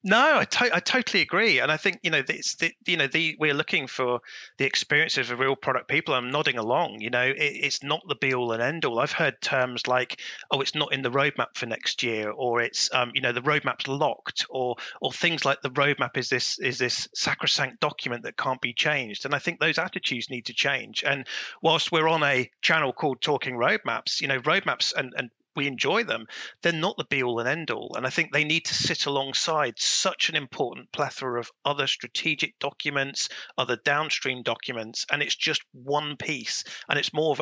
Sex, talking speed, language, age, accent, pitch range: male, 215 wpm, English, 30-49, British, 125-155 Hz